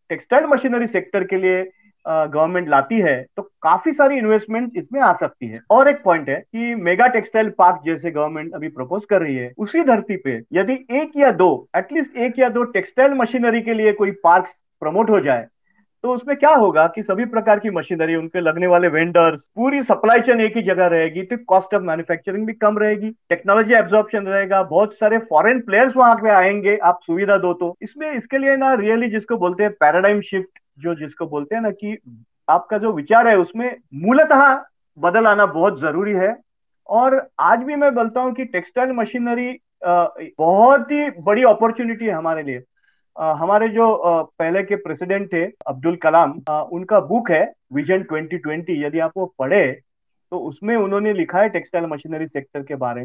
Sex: male